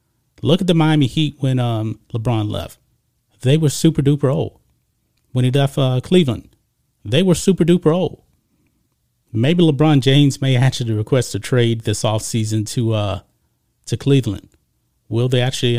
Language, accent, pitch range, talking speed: English, American, 120-155 Hz, 145 wpm